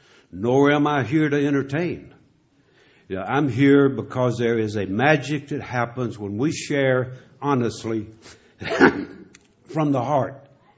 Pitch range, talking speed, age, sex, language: 115-150 Hz, 135 wpm, 60-79, male, English